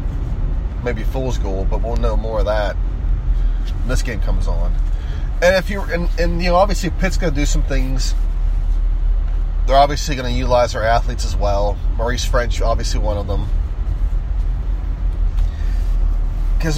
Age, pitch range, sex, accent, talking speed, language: 30-49, 75-115 Hz, male, American, 155 wpm, English